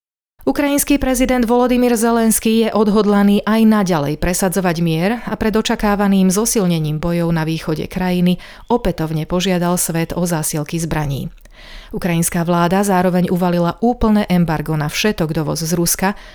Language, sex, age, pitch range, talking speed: Slovak, female, 30-49, 165-195 Hz, 130 wpm